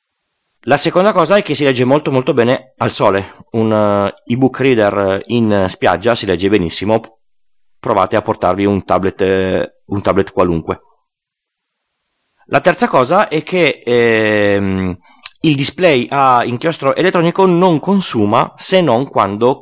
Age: 30-49